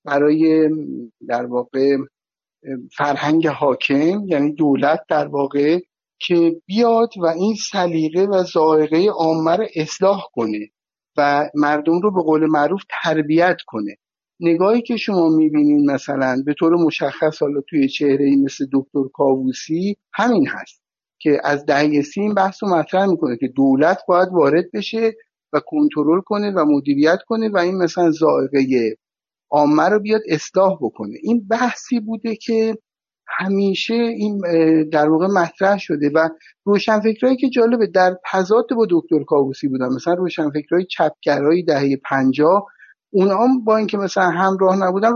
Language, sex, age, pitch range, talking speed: Persian, male, 50-69, 150-210 Hz, 135 wpm